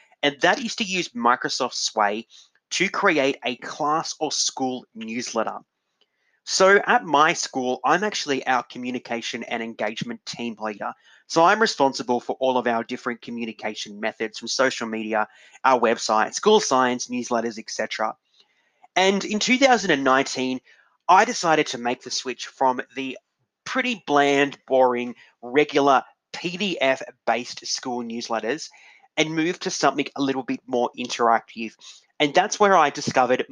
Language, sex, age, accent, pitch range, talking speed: English, male, 30-49, Australian, 120-180 Hz, 140 wpm